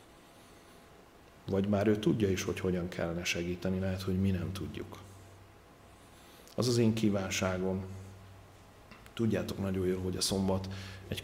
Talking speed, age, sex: 135 wpm, 40-59, male